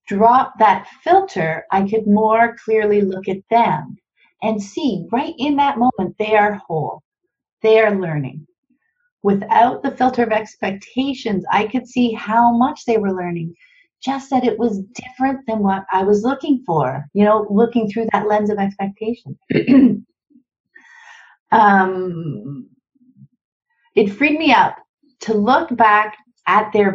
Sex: female